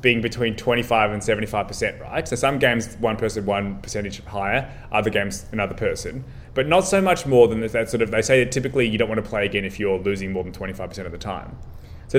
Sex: male